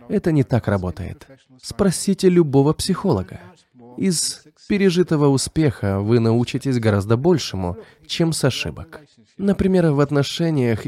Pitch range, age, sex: 110-165 Hz, 20-39, male